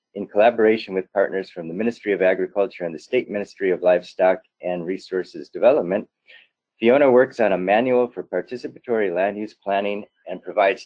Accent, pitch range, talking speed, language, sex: American, 95-125 Hz, 165 wpm, English, male